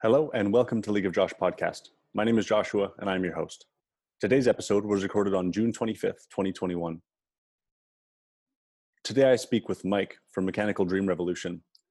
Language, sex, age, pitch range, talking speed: English, male, 30-49, 90-100 Hz, 165 wpm